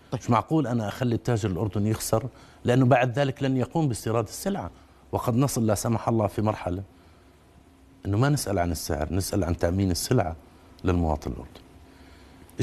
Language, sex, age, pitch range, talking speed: Arabic, male, 50-69, 85-115 Hz, 150 wpm